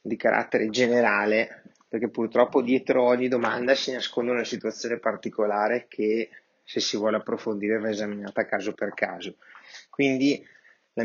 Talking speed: 135 wpm